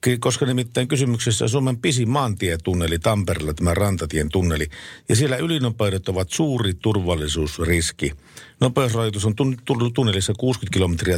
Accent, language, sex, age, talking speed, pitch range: native, Finnish, male, 50-69, 120 wpm, 90-125 Hz